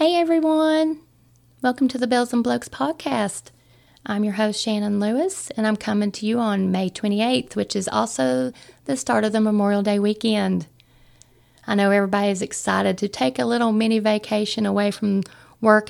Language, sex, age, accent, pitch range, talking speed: English, female, 30-49, American, 150-215 Hz, 175 wpm